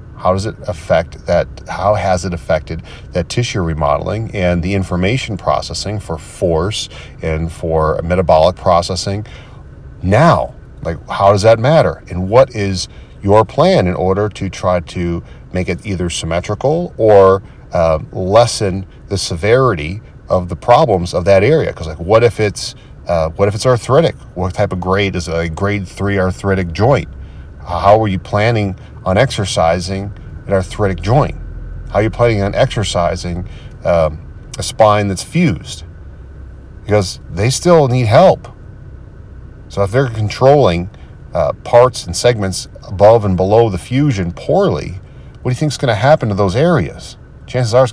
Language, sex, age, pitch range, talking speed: English, male, 40-59, 90-110 Hz, 160 wpm